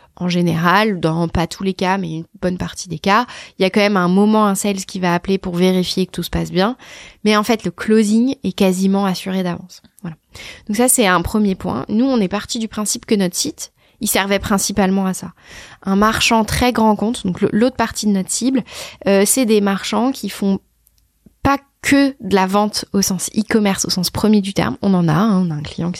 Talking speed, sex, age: 230 wpm, female, 20-39